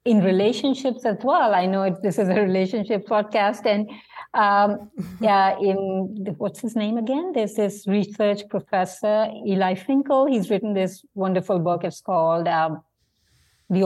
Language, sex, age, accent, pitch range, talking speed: English, female, 50-69, Indian, 175-220 Hz, 145 wpm